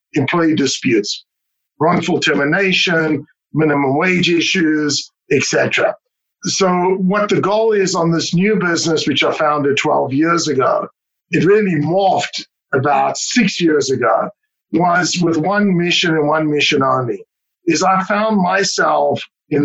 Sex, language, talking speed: male, English, 135 wpm